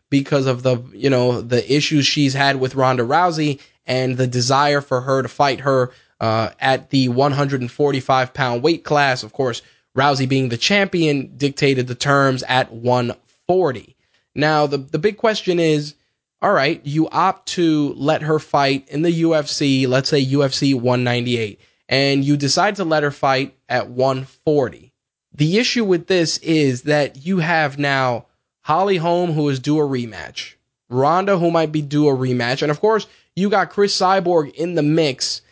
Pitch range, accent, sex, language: 130-155 Hz, American, male, English